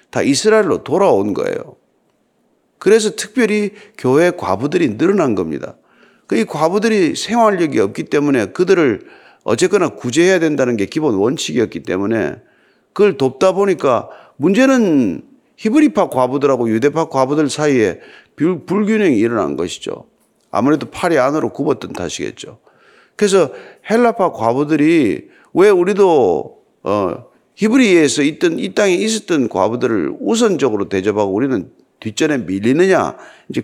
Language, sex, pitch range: Korean, male, 160-255 Hz